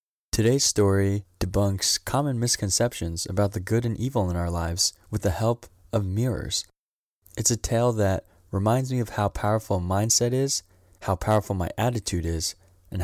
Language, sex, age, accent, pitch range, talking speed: English, male, 20-39, American, 90-115 Hz, 165 wpm